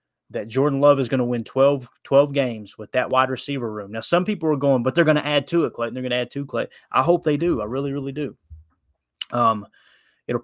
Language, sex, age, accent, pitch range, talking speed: English, male, 20-39, American, 120-140 Hz, 255 wpm